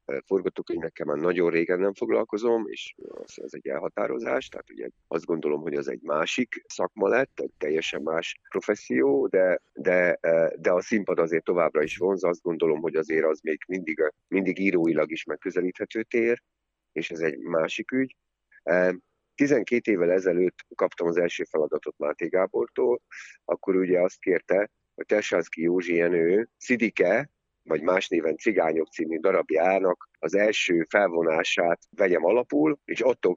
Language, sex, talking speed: Hungarian, male, 150 wpm